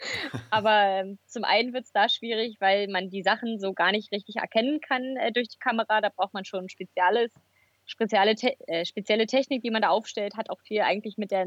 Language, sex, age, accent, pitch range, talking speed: German, female, 20-39, German, 195-240 Hz, 215 wpm